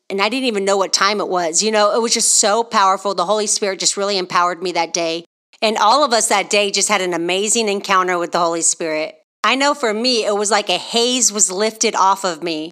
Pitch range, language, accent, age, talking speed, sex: 190-230 Hz, English, American, 40-59, 255 wpm, female